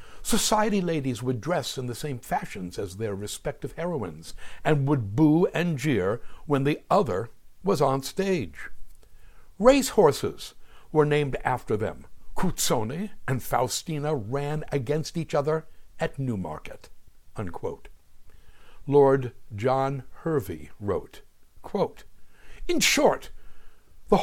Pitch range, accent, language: 125-165 Hz, American, English